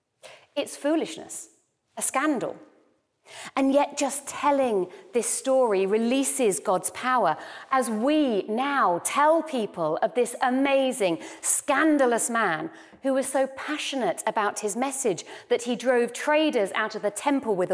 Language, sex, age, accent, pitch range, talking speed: English, female, 40-59, British, 210-275 Hz, 130 wpm